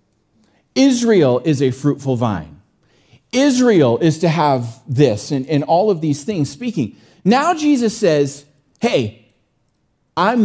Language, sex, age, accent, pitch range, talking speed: English, male, 40-59, American, 110-145 Hz, 125 wpm